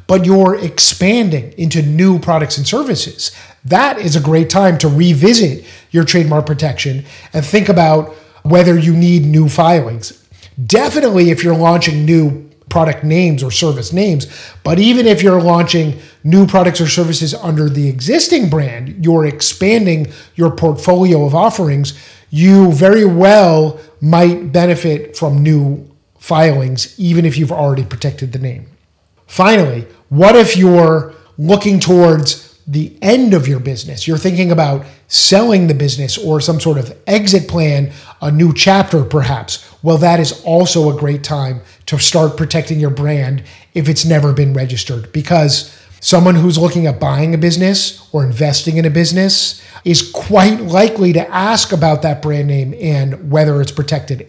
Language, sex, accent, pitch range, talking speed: English, male, American, 145-180 Hz, 155 wpm